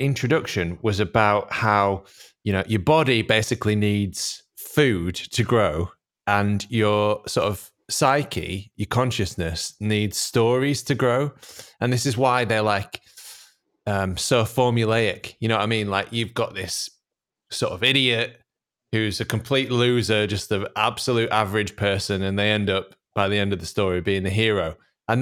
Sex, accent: male, British